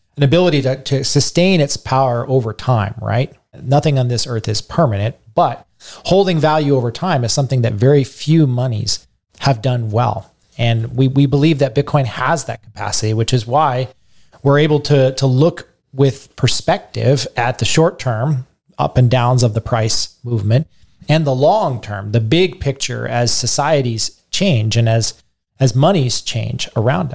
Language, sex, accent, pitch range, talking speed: English, male, American, 120-150 Hz, 170 wpm